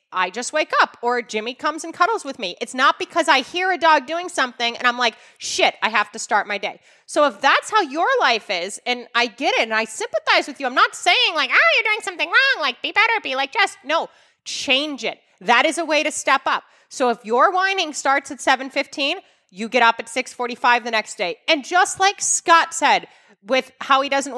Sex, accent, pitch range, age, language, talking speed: female, American, 240-325 Hz, 30-49, English, 235 wpm